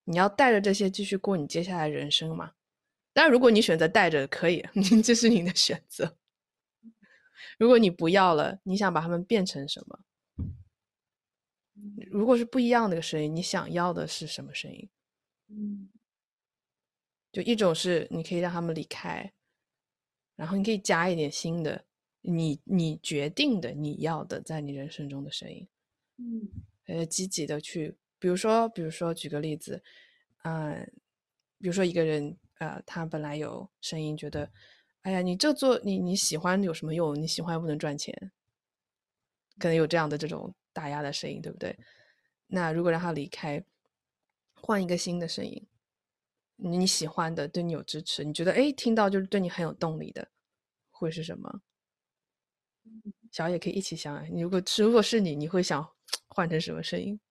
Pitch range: 160-205 Hz